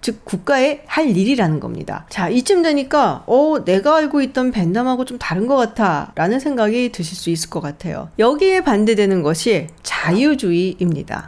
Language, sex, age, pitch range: Korean, female, 40-59, 185-270 Hz